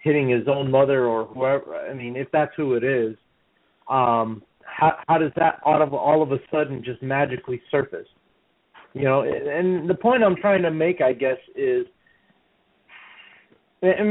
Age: 30-49